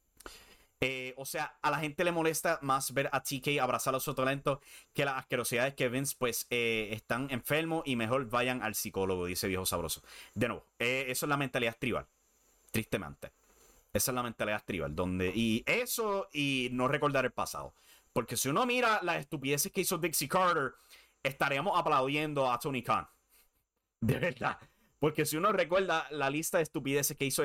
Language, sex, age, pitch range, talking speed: English, male, 30-49, 120-165 Hz, 175 wpm